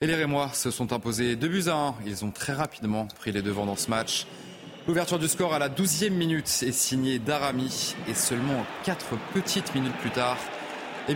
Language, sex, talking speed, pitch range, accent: French, male, 210 wpm, 110-145 Hz, French